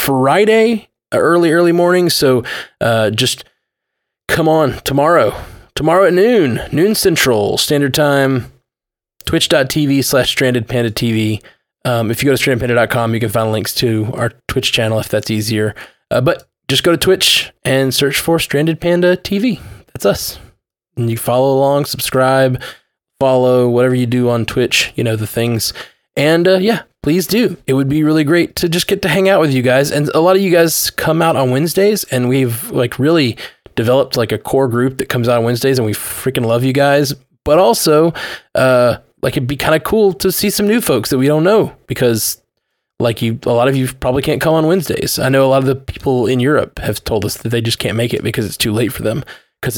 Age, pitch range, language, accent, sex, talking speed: 20-39, 120-160 Hz, English, American, male, 205 wpm